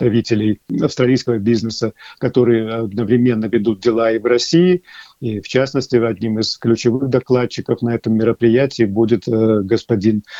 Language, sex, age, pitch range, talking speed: Russian, male, 50-69, 110-125 Hz, 120 wpm